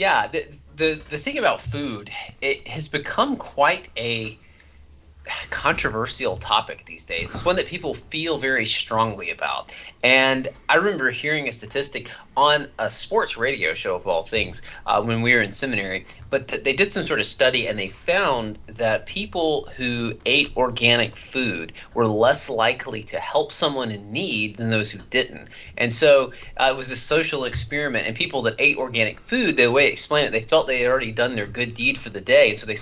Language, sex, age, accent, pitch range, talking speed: English, male, 30-49, American, 110-140 Hz, 190 wpm